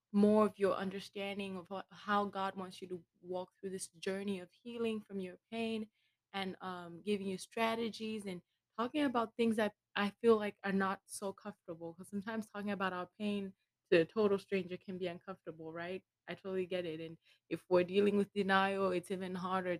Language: English